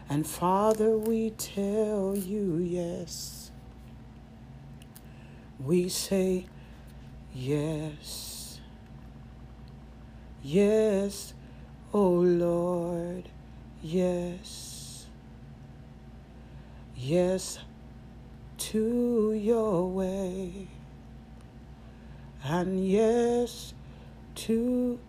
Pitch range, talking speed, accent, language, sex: 185-245 Hz, 50 wpm, American, English, female